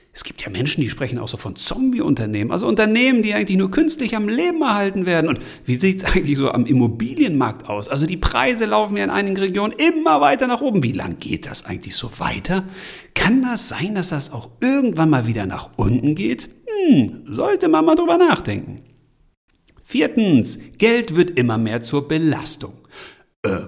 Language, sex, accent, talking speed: German, male, German, 190 wpm